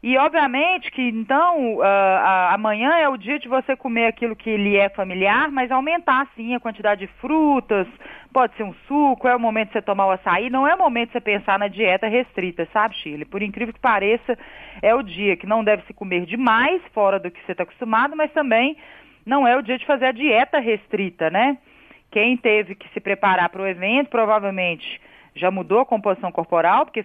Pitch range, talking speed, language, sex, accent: 195-265 Hz, 205 wpm, Portuguese, female, Brazilian